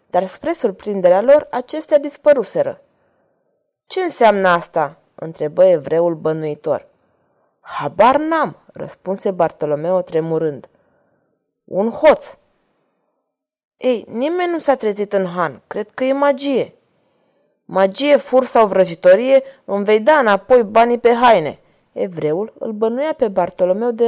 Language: Romanian